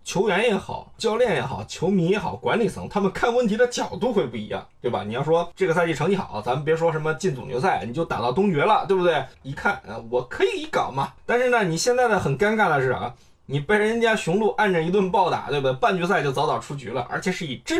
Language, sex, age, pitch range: Chinese, male, 20-39, 135-210 Hz